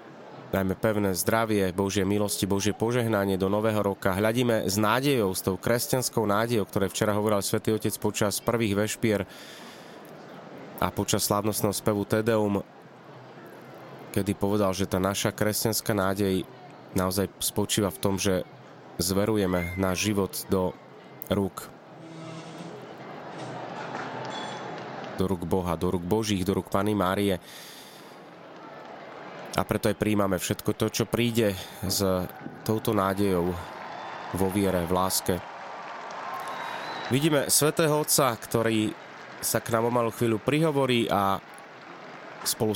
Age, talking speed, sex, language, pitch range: 30-49, 120 wpm, male, Slovak, 95-120 Hz